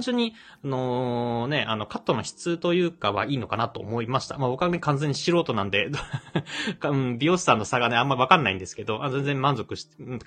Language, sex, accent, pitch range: Japanese, male, native, 110-150 Hz